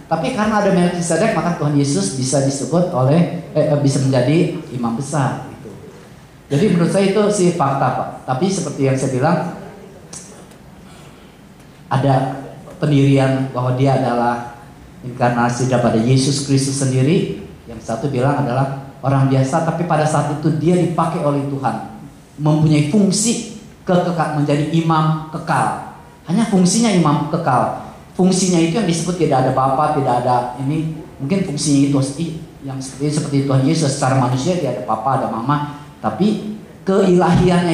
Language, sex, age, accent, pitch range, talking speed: English, male, 30-49, Indonesian, 135-170 Hz, 140 wpm